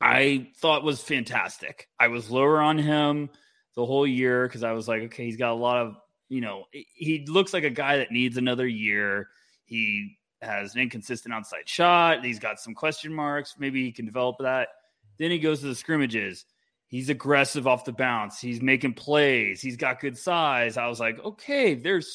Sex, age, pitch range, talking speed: male, 20-39, 115-150 Hz, 195 wpm